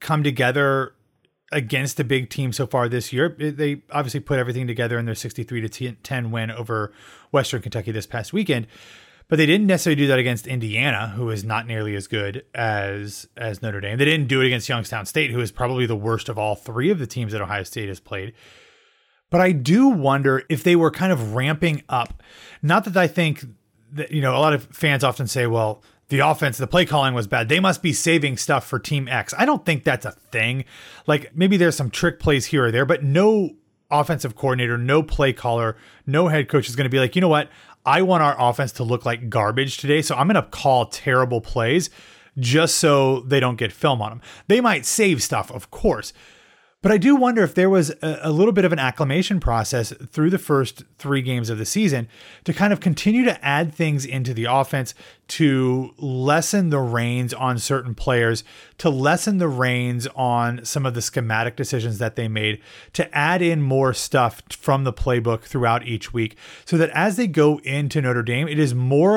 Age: 30-49